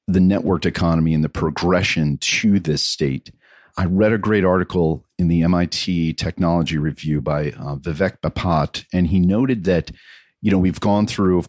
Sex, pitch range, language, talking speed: male, 80-95 Hz, English, 170 wpm